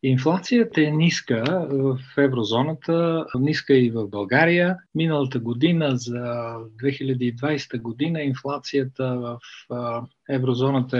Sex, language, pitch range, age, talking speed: male, Bulgarian, 120-145 Hz, 40-59, 95 wpm